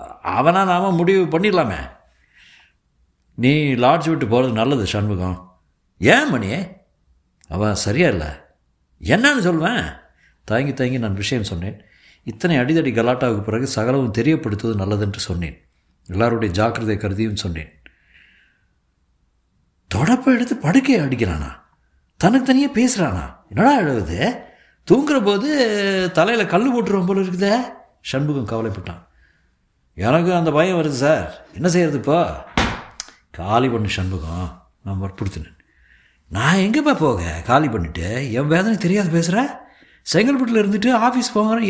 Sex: male